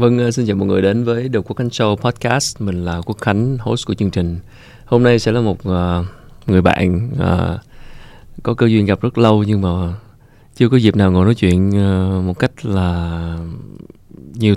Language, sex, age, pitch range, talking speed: Vietnamese, male, 20-39, 90-115 Hz, 200 wpm